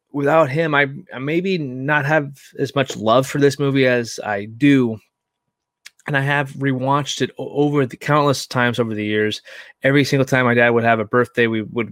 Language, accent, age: English, American, 20-39